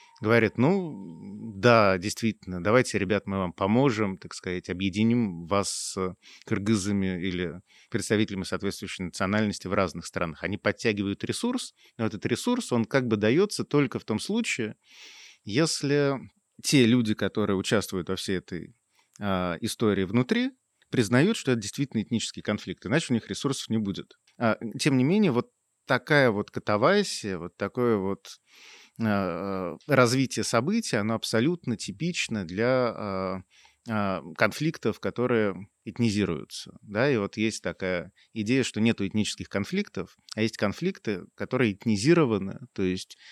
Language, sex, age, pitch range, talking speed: Russian, male, 30-49, 100-130 Hz, 130 wpm